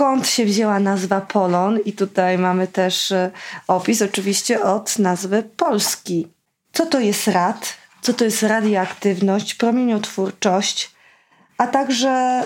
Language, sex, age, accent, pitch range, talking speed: Polish, female, 20-39, native, 200-245 Hz, 120 wpm